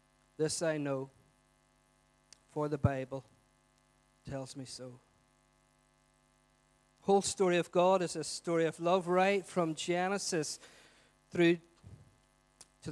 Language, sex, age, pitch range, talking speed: English, male, 40-59, 140-180 Hz, 110 wpm